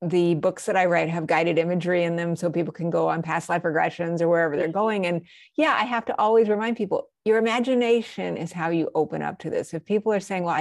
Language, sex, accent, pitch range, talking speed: English, female, American, 170-210 Hz, 250 wpm